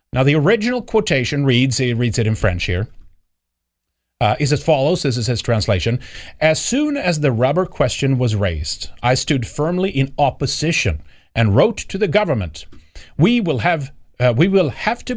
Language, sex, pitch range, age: English, male, 105-145 Hz, 30-49